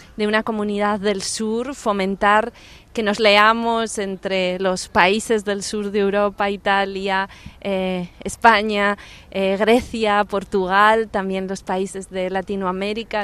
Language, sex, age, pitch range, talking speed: Portuguese, female, 20-39, 190-215 Hz, 120 wpm